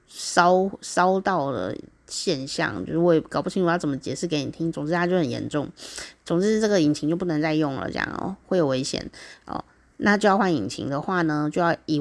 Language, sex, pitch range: Chinese, female, 155-195 Hz